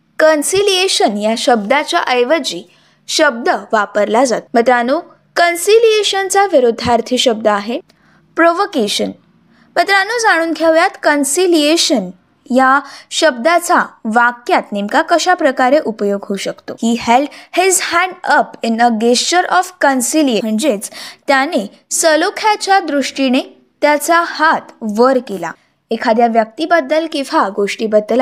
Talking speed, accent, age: 95 wpm, native, 20-39